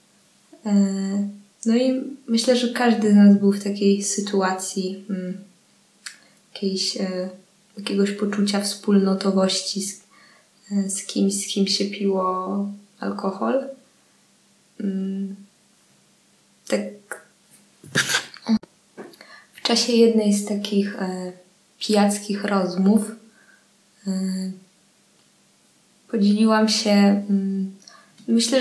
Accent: native